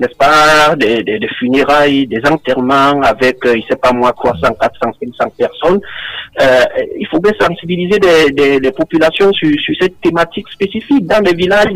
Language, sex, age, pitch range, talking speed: French, male, 50-69, 130-190 Hz, 175 wpm